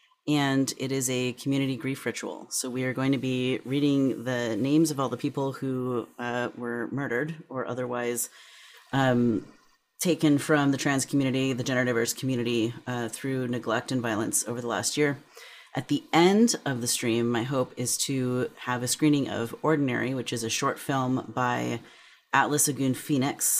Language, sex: English, female